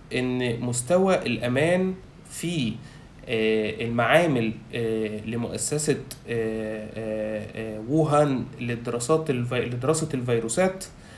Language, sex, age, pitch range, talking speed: Arabic, male, 20-39, 120-160 Hz, 55 wpm